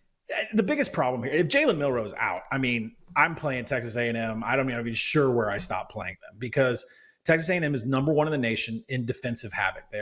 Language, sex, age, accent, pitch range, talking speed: English, male, 30-49, American, 120-165 Hz, 235 wpm